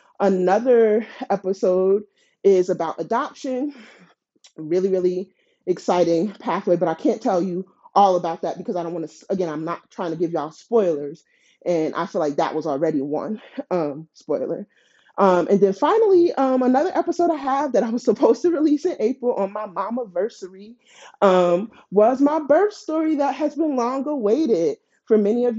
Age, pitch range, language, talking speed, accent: 30-49, 185-255 Hz, English, 170 wpm, American